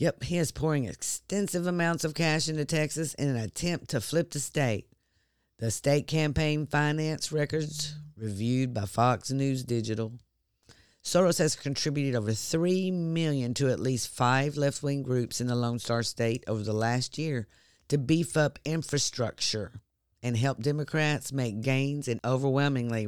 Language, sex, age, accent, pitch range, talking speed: English, female, 50-69, American, 115-155 Hz, 155 wpm